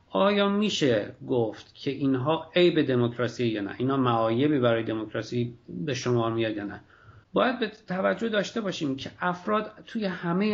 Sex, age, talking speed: male, 50-69, 155 wpm